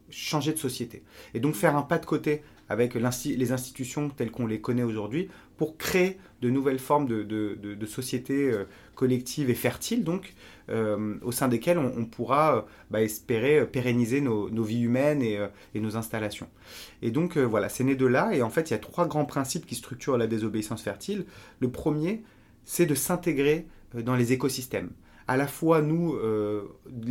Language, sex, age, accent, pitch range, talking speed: French, male, 30-49, French, 115-155 Hz, 195 wpm